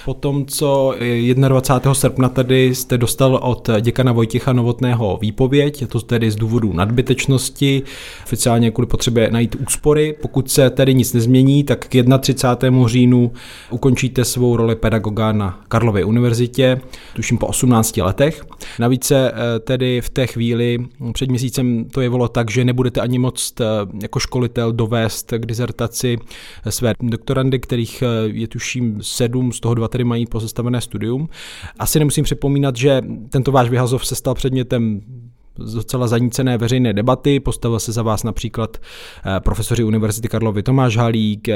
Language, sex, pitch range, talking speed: Czech, male, 115-130 Hz, 145 wpm